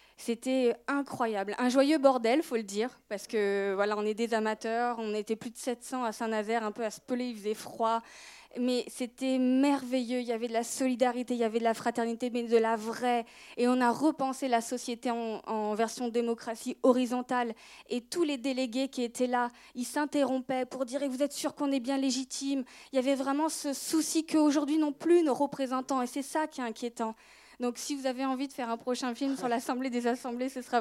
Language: French